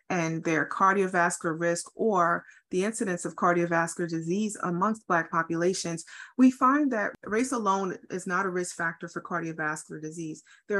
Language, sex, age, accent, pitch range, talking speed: English, female, 30-49, American, 170-200 Hz, 150 wpm